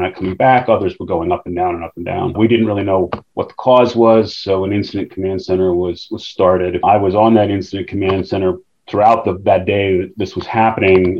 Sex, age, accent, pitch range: male, 30-49, American, 90-110 Hz